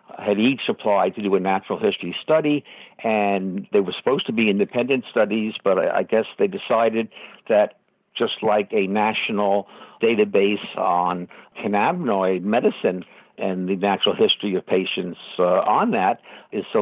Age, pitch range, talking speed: 60-79, 95-120 Hz, 155 wpm